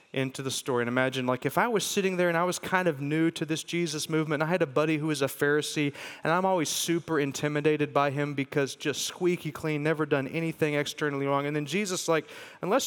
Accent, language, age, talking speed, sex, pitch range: American, English, 30-49, 235 wpm, male, 140-190 Hz